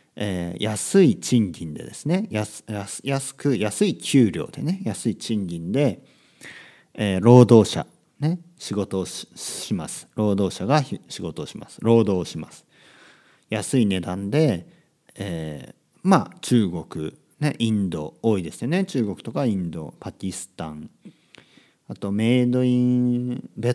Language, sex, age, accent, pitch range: Japanese, male, 40-59, native, 95-145 Hz